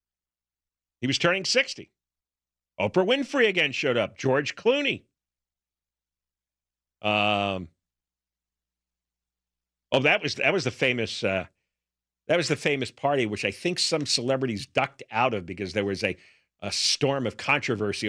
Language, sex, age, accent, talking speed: English, male, 50-69, American, 135 wpm